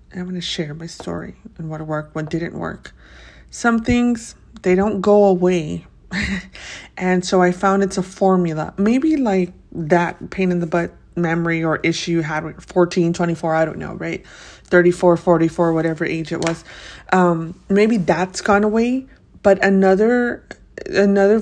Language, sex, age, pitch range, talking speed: English, female, 30-49, 170-205 Hz, 155 wpm